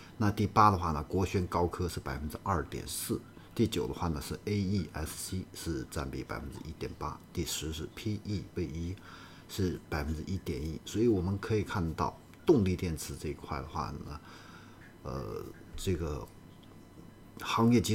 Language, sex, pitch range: Chinese, male, 80-100 Hz